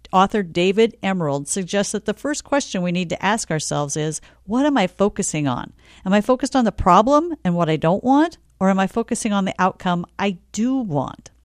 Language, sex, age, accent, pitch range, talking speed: English, female, 50-69, American, 165-235 Hz, 210 wpm